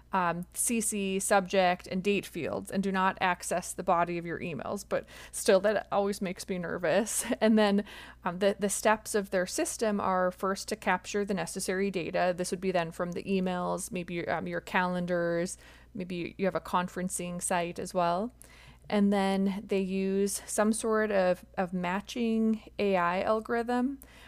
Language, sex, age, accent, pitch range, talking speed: English, female, 20-39, American, 180-205 Hz, 170 wpm